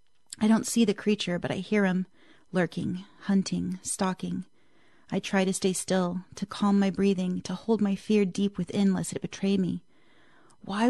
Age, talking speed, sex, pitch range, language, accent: 30-49, 175 wpm, female, 185-220 Hz, English, American